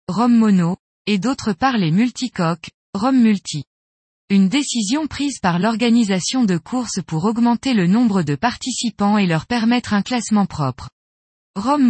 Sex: female